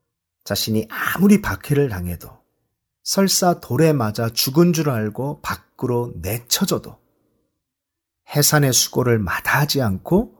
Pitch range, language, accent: 110-170 Hz, Korean, native